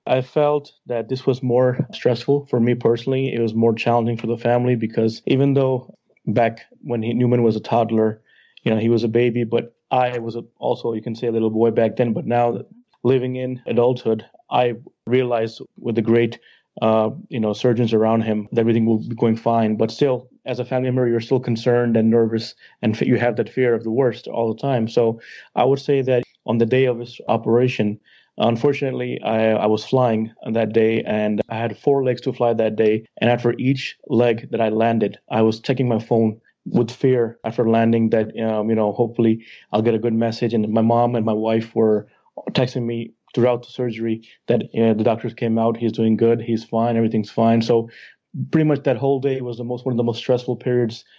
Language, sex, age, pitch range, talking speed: English, male, 30-49, 115-125 Hz, 210 wpm